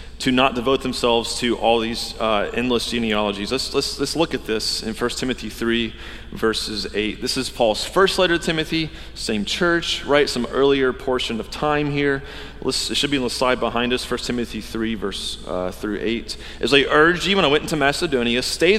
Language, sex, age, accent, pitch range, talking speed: English, male, 30-49, American, 120-175 Hz, 205 wpm